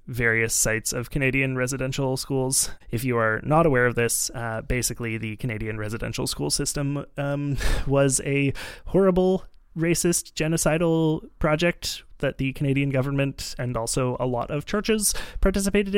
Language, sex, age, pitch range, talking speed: English, male, 20-39, 120-155 Hz, 145 wpm